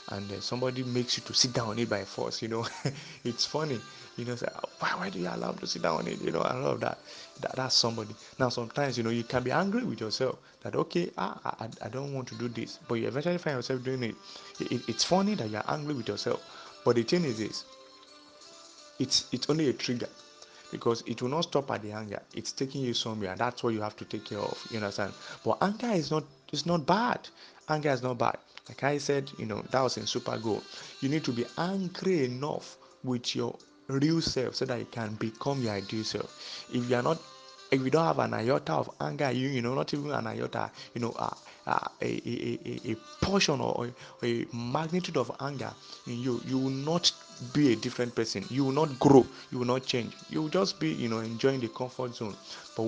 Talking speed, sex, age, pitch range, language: 235 wpm, male, 30-49, 115-145 Hz, English